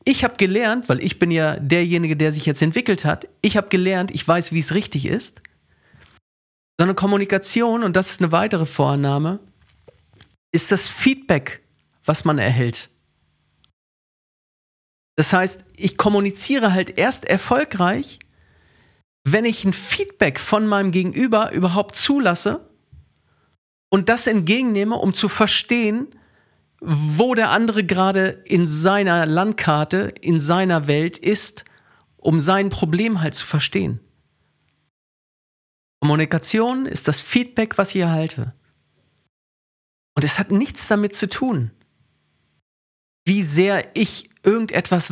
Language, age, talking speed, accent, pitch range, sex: German, 40-59, 125 wpm, German, 155-210 Hz, male